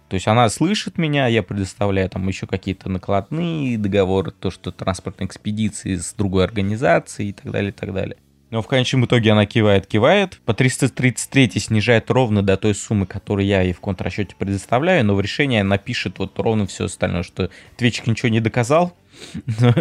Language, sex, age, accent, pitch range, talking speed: Russian, male, 20-39, native, 95-120 Hz, 180 wpm